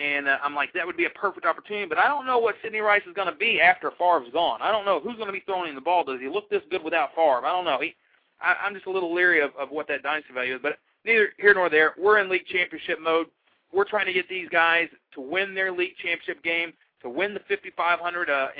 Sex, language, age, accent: male, English, 40-59, American